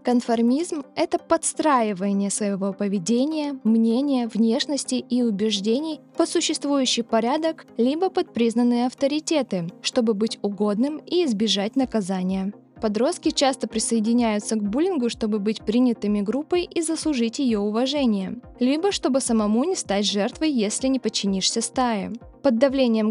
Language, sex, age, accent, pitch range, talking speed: Russian, female, 20-39, native, 220-280 Hz, 125 wpm